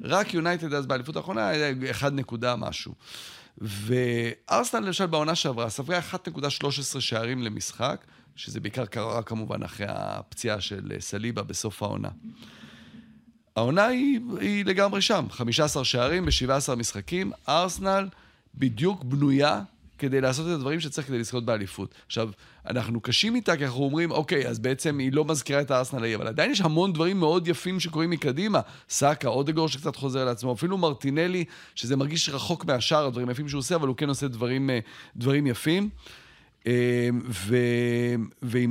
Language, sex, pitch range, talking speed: Hebrew, male, 115-155 Hz, 145 wpm